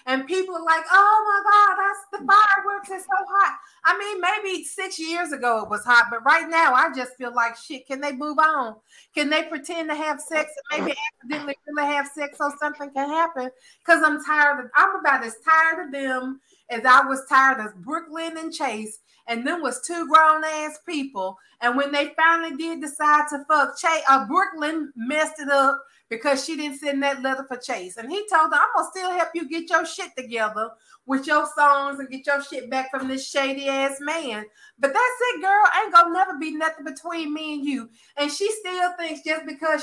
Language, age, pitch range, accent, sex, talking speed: English, 30-49, 270-330 Hz, American, female, 215 wpm